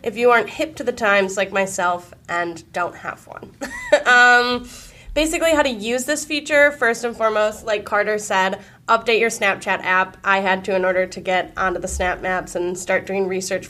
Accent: American